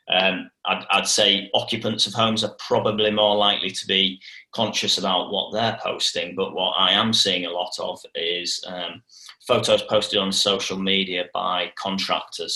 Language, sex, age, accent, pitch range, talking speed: English, male, 30-49, British, 95-105 Hz, 165 wpm